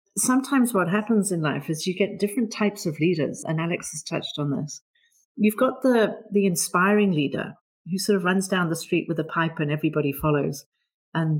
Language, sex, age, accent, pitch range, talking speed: English, female, 50-69, British, 155-205 Hz, 200 wpm